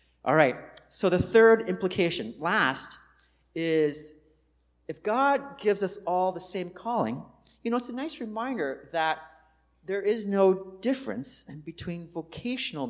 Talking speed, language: 135 wpm, English